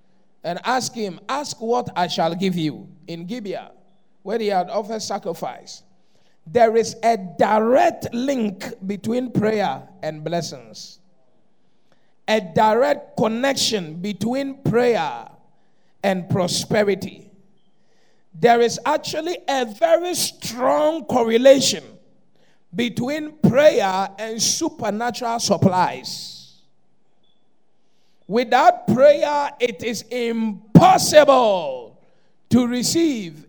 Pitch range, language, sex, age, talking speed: 190-255 Hz, English, male, 50-69, 90 wpm